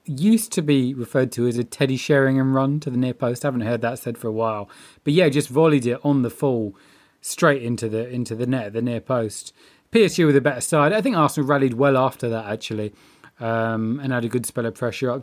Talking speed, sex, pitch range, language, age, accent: 245 wpm, male, 115-140 Hz, English, 20-39, British